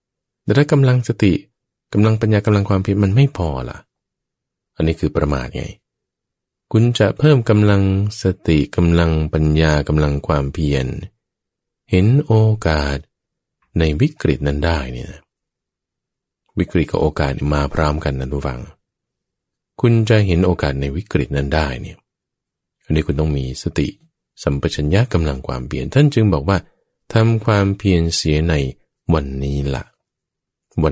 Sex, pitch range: male, 75-110 Hz